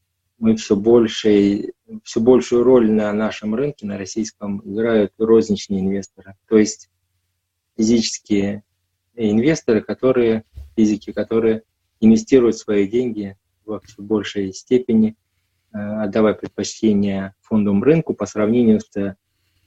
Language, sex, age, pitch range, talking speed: Russian, male, 20-39, 95-110 Hz, 105 wpm